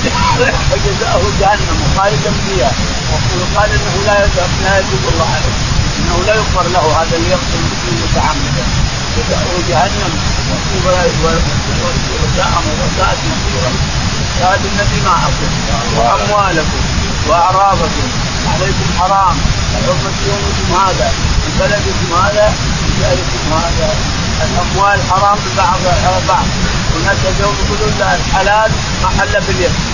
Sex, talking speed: male, 105 wpm